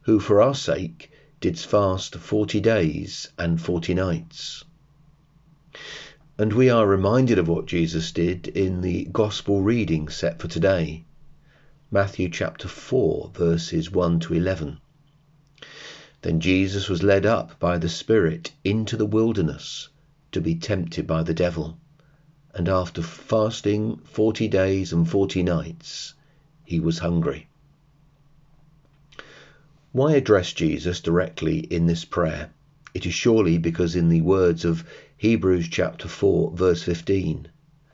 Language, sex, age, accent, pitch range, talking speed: English, male, 40-59, British, 85-145 Hz, 130 wpm